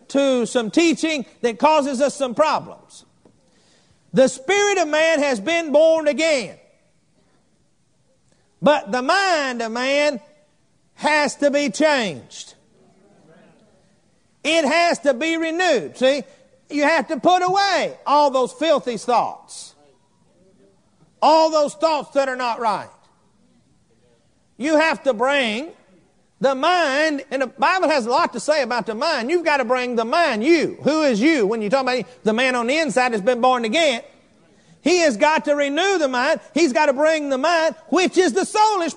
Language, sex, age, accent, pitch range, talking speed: English, male, 50-69, American, 260-325 Hz, 160 wpm